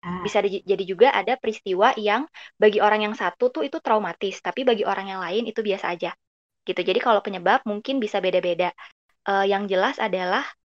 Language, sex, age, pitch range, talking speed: Indonesian, female, 20-39, 200-240 Hz, 185 wpm